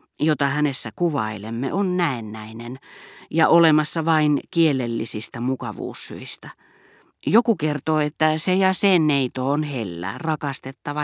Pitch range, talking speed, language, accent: 135-175 Hz, 110 wpm, Finnish, native